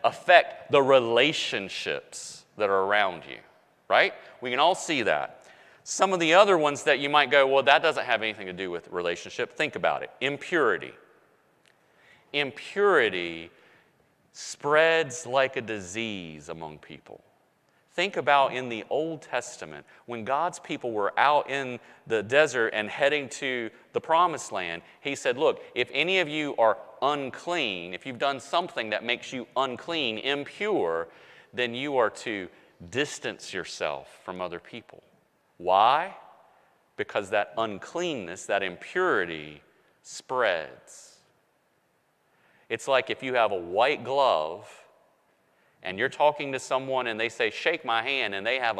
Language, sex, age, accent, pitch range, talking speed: English, male, 40-59, American, 105-150 Hz, 145 wpm